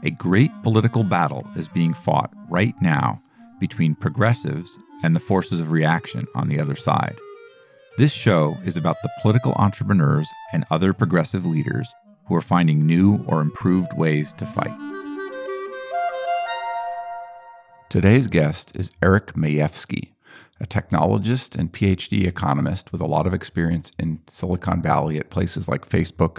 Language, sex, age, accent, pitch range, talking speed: English, male, 50-69, American, 85-115 Hz, 140 wpm